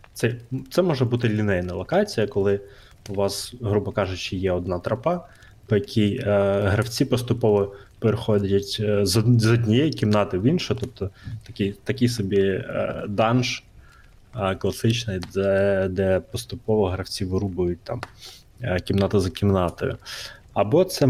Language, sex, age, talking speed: Ukrainian, male, 20-39, 130 wpm